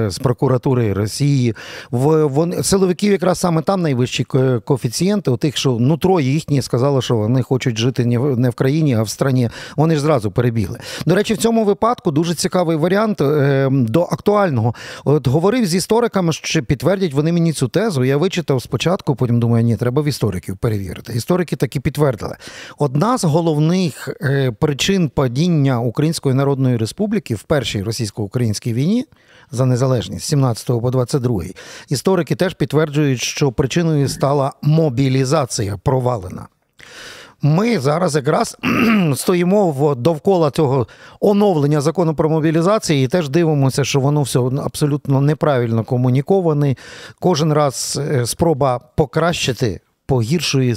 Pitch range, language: 125-170 Hz, Ukrainian